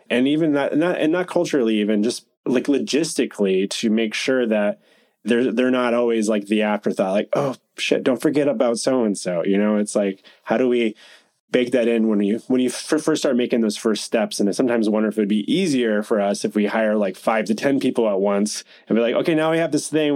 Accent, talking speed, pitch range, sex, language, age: American, 245 wpm, 105-130 Hz, male, English, 20-39